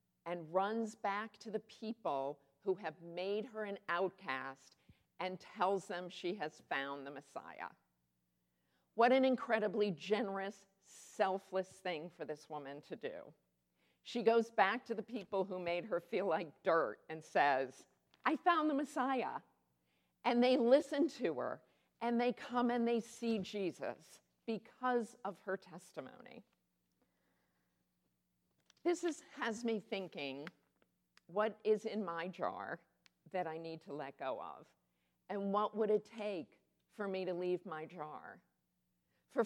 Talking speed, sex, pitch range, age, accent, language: 140 wpm, female, 155-220 Hz, 50-69, American, English